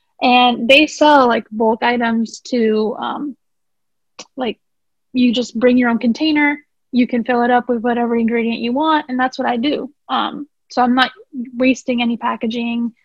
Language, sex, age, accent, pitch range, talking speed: English, female, 10-29, American, 235-280 Hz, 170 wpm